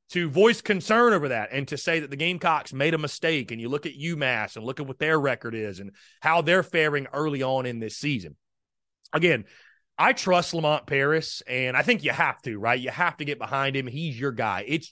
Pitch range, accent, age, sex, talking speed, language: 125-180 Hz, American, 30-49, male, 230 wpm, English